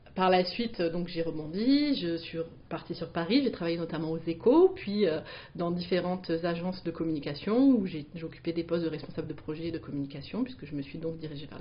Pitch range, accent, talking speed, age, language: 165-215 Hz, French, 210 wpm, 30-49, French